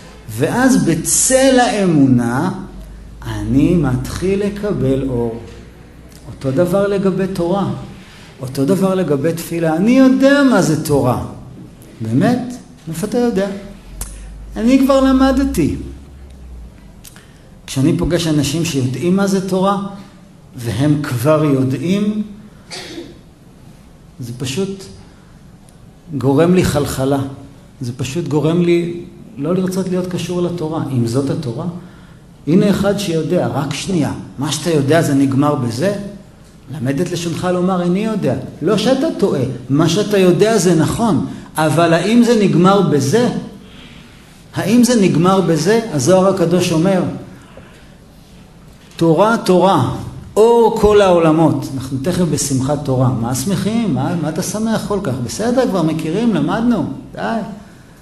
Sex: male